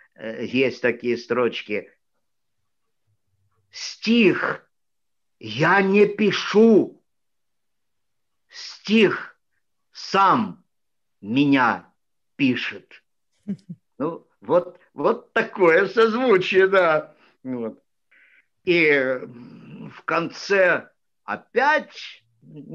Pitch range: 155-225 Hz